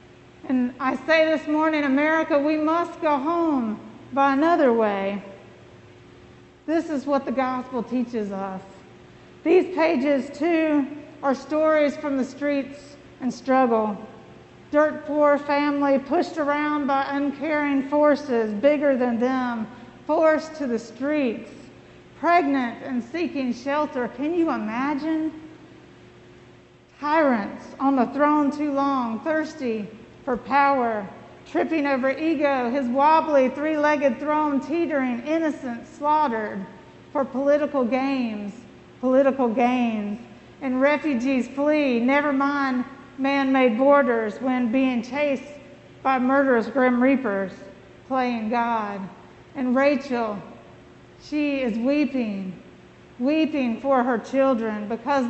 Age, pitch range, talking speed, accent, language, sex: 50-69, 245-295 Hz, 110 wpm, American, English, female